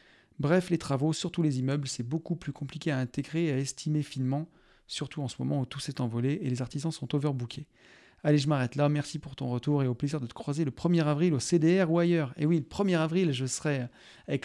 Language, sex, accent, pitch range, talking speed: French, male, French, 130-160 Hz, 240 wpm